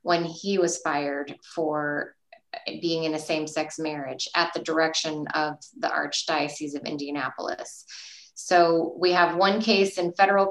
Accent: American